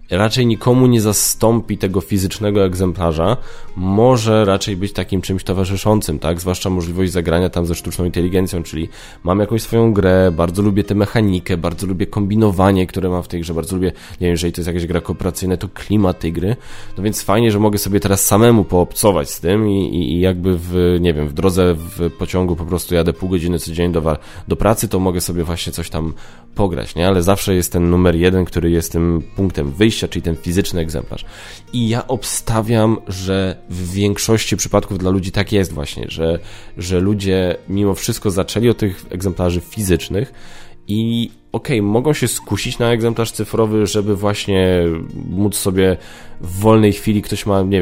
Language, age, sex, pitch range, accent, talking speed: Polish, 20-39, male, 85-105 Hz, native, 185 wpm